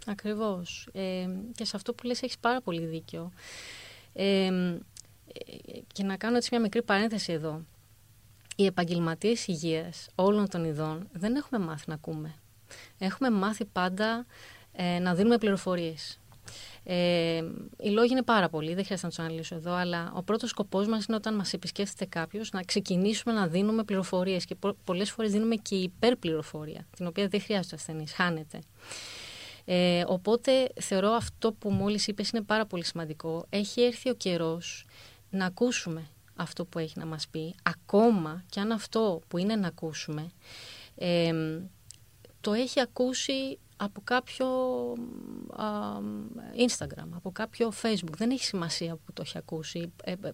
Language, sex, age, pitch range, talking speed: Greek, female, 30-49, 165-215 Hz, 155 wpm